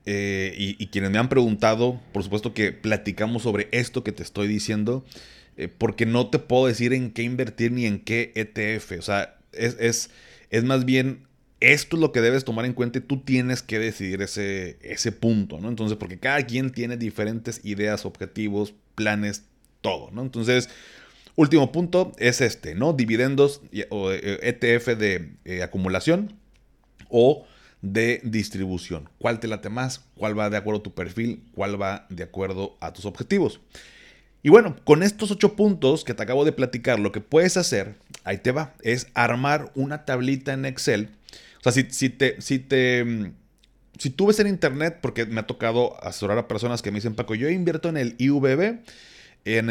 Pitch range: 105-135 Hz